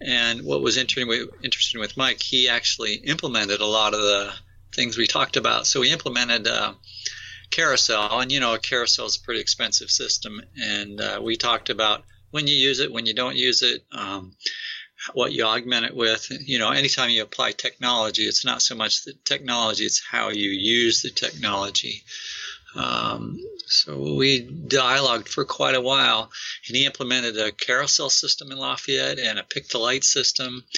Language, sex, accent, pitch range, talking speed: English, male, American, 110-130 Hz, 180 wpm